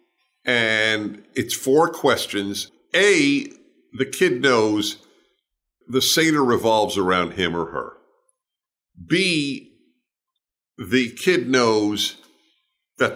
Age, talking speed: 50-69, 90 wpm